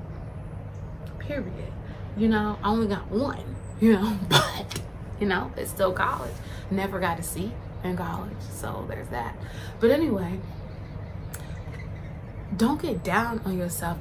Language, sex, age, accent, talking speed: English, female, 20-39, American, 135 wpm